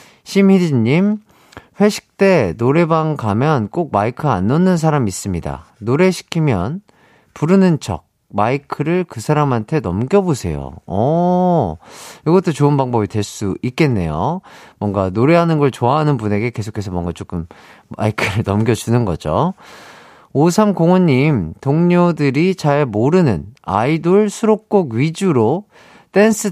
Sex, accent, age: male, native, 40-59